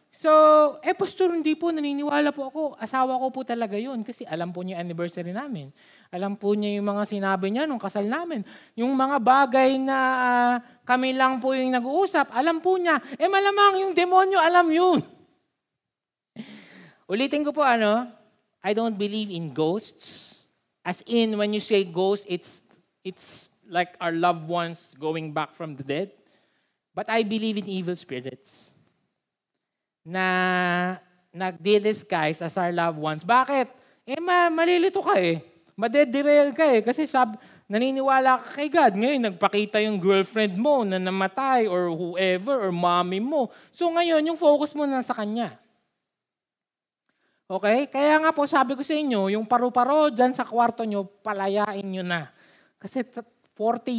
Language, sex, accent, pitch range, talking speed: Filipino, male, native, 190-270 Hz, 155 wpm